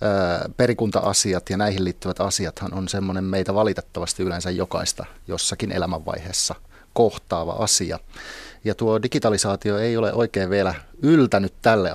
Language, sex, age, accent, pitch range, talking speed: Finnish, male, 30-49, native, 90-110 Hz, 120 wpm